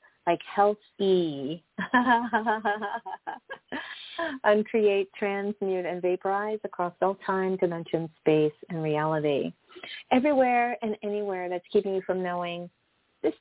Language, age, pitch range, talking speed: English, 40-59, 155-200 Hz, 105 wpm